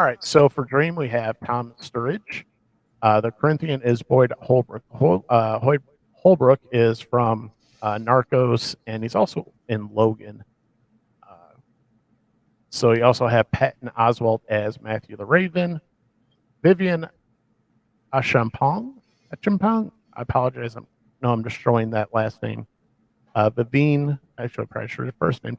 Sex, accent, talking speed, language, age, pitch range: male, American, 135 wpm, English, 50-69, 115-140 Hz